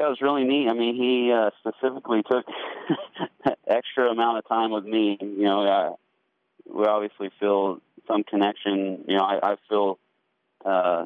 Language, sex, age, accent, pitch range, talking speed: English, male, 30-49, American, 90-105 Hz, 175 wpm